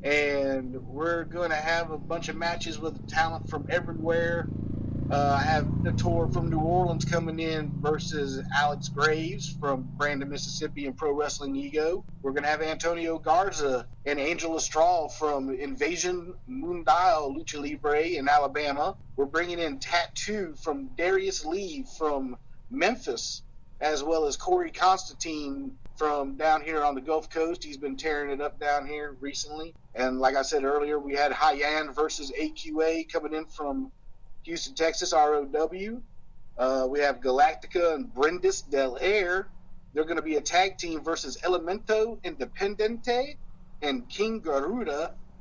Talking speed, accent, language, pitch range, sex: 150 wpm, American, English, 145-180 Hz, male